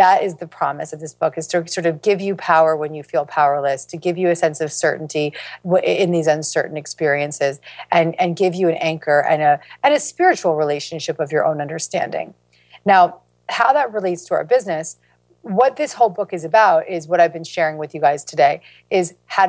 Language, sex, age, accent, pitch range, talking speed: English, female, 40-59, American, 155-190 Hz, 210 wpm